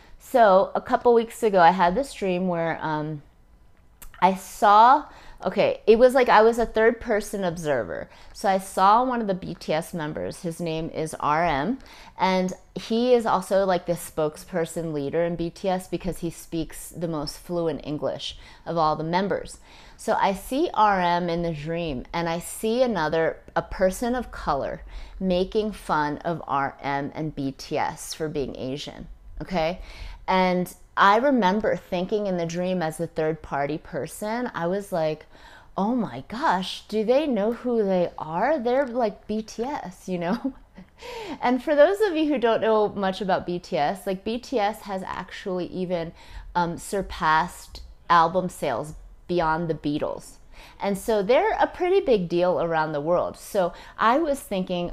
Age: 30-49